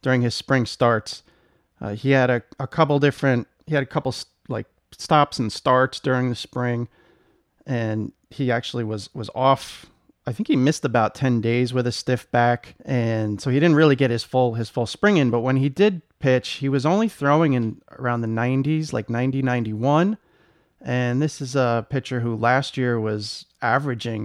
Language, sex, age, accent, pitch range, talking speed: English, male, 30-49, American, 115-140 Hz, 190 wpm